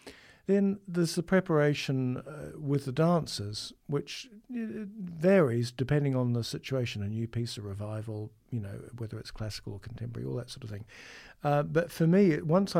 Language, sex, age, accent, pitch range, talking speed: English, male, 50-69, British, 115-140 Hz, 165 wpm